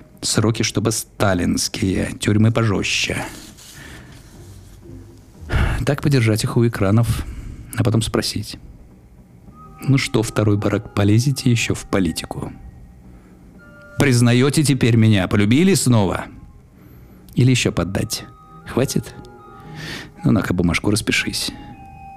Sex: male